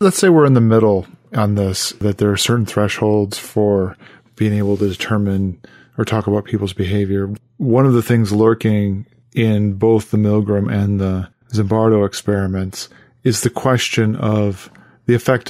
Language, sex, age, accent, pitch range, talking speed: English, male, 40-59, American, 105-120 Hz, 165 wpm